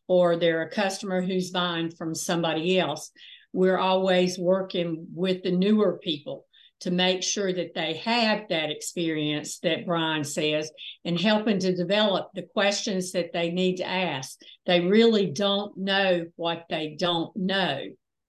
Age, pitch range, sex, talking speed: 60-79, 170-195 Hz, female, 150 wpm